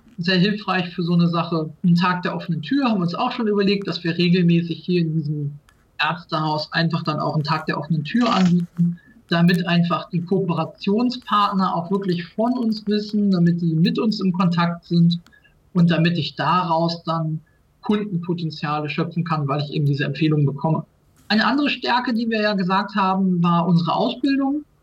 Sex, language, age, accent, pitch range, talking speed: male, German, 40-59, German, 165-205 Hz, 180 wpm